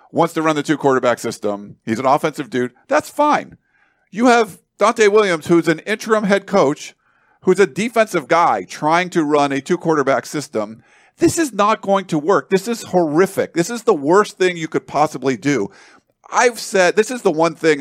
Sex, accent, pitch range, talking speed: male, American, 145-200 Hz, 190 wpm